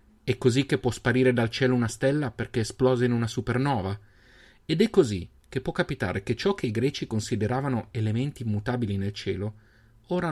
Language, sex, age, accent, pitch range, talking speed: Italian, male, 30-49, native, 105-135 Hz, 180 wpm